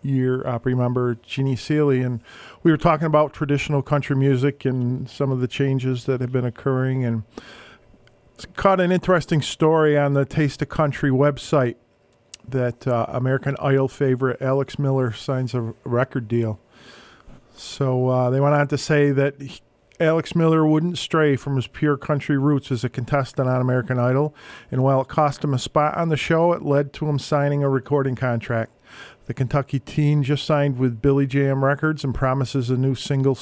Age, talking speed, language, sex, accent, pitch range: 40-59, 180 wpm, English, male, American, 130-145 Hz